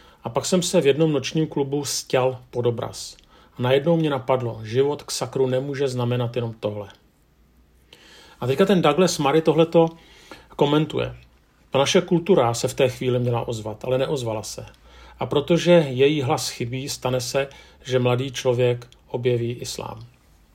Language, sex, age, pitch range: Czech, male, 40-59, 125-150 Hz